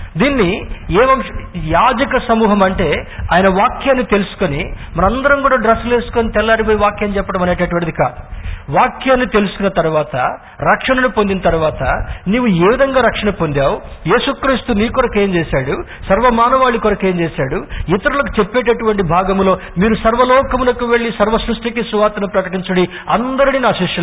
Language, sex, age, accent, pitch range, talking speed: Telugu, male, 50-69, native, 175-225 Hz, 115 wpm